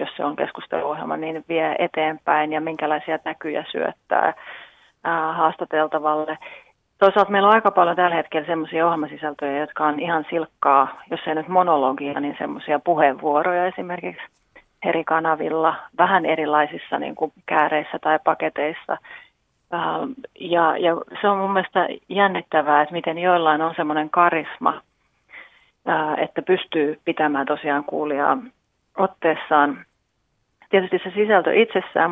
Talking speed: 125 wpm